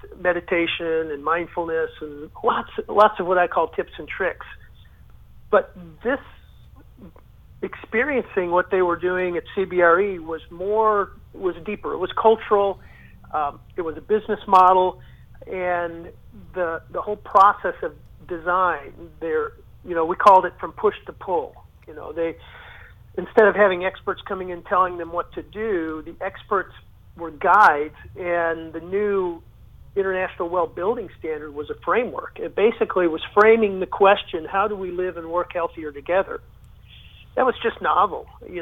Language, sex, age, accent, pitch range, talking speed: English, male, 50-69, American, 165-200 Hz, 155 wpm